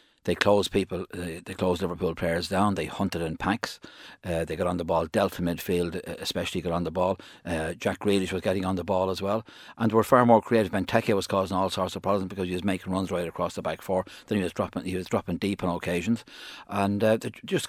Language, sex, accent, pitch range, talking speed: English, male, Irish, 85-105 Hz, 250 wpm